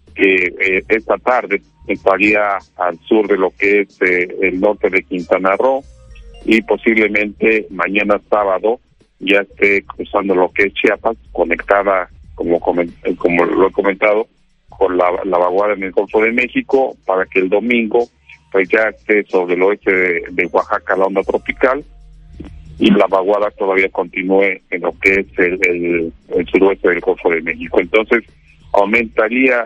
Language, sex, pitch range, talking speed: Spanish, male, 95-110 Hz, 155 wpm